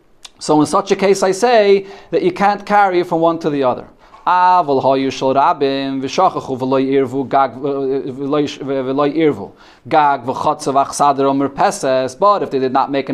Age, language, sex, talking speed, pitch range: 30-49, English, male, 105 wpm, 140-190 Hz